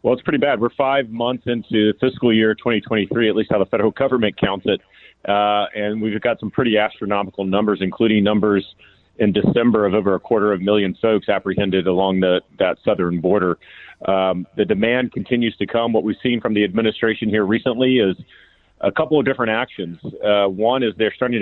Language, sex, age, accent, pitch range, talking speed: English, male, 40-59, American, 100-115 Hz, 195 wpm